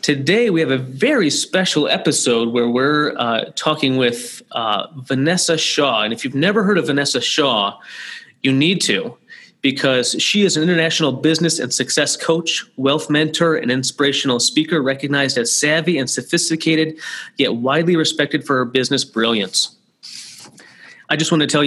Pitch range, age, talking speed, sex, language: 130-155 Hz, 30-49, 160 wpm, male, English